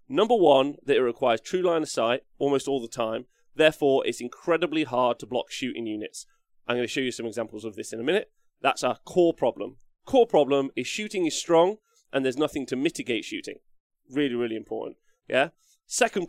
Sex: male